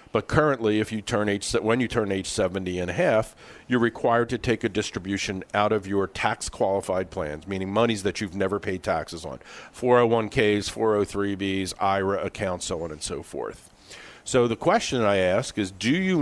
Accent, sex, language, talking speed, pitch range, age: American, male, English, 170 wpm, 95-120 Hz, 50-69